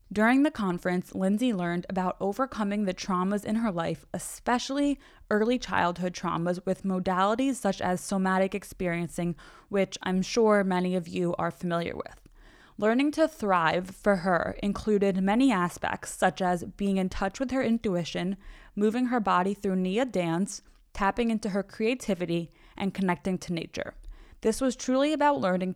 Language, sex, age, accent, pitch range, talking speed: English, female, 20-39, American, 180-225 Hz, 155 wpm